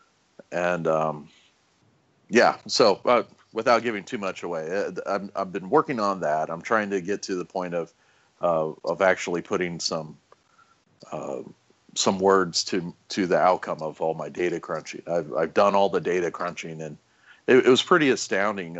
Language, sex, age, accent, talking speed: English, male, 40-59, American, 170 wpm